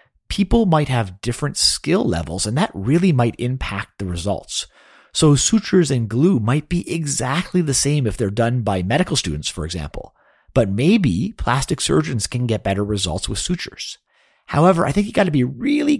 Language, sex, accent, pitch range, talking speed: English, male, American, 100-155 Hz, 180 wpm